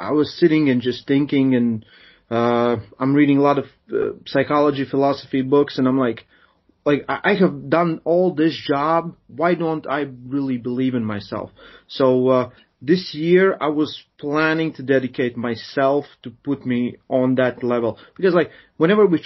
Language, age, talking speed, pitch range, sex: English, 30-49, 170 wpm, 125-160 Hz, male